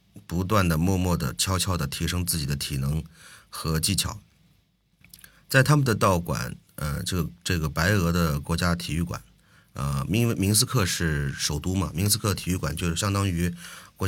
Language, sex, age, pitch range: Chinese, male, 30-49, 85-110 Hz